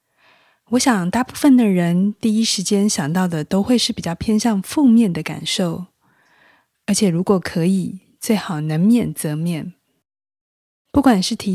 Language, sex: Chinese, female